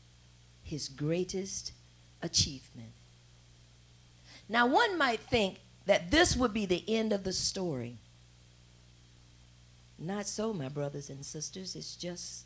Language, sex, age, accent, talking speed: English, female, 50-69, American, 115 wpm